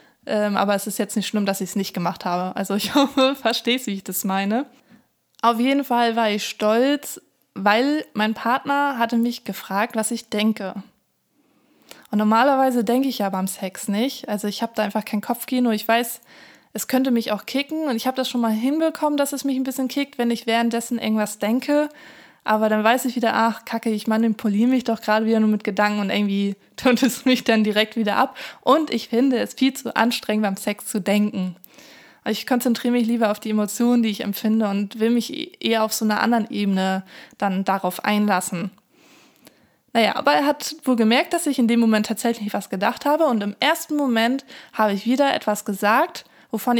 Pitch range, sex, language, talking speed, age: 210-260 Hz, female, German, 205 wpm, 20-39